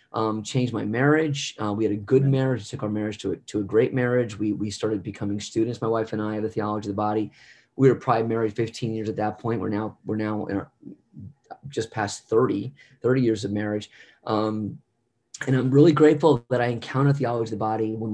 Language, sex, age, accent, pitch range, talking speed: English, male, 30-49, American, 105-120 Hz, 220 wpm